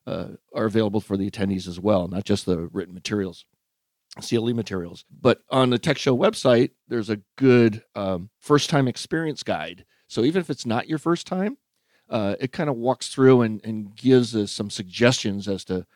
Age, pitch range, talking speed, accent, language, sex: 40-59, 100-130 Hz, 190 wpm, American, English, male